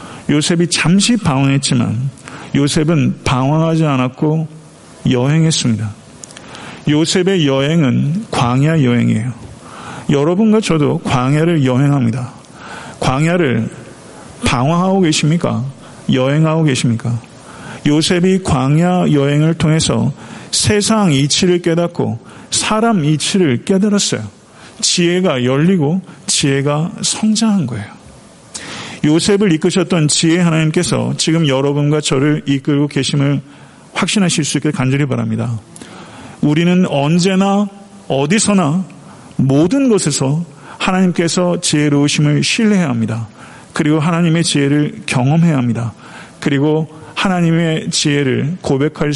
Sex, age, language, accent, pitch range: male, 50-69, Korean, native, 135-180 Hz